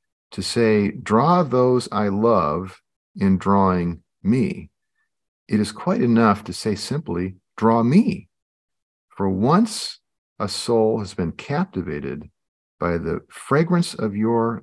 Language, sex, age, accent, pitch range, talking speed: English, male, 50-69, American, 90-120 Hz, 125 wpm